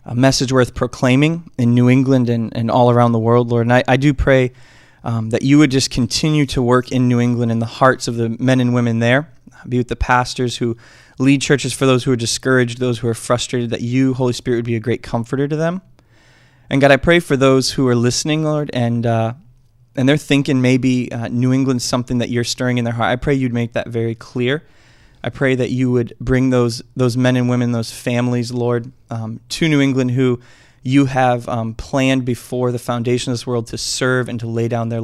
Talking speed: 230 wpm